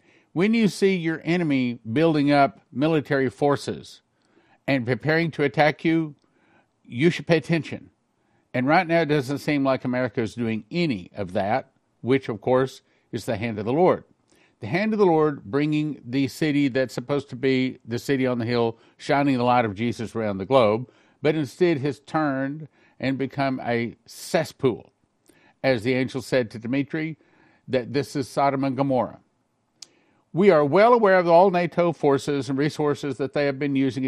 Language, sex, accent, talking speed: English, male, American, 175 wpm